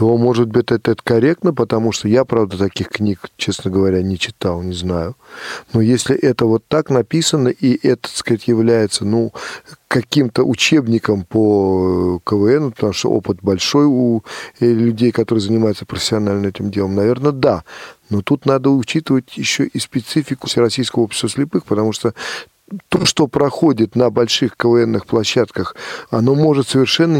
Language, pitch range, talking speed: Russian, 105-125 Hz, 150 wpm